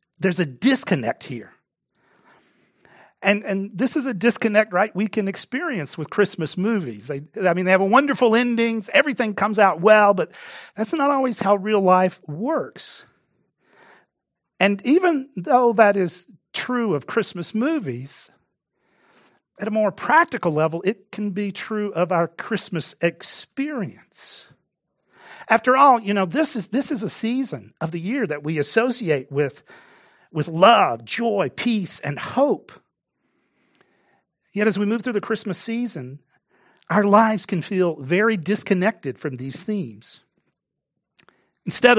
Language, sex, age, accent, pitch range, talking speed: English, male, 50-69, American, 165-230 Hz, 145 wpm